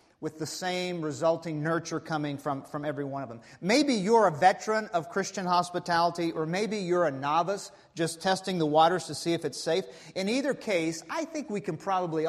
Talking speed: 200 wpm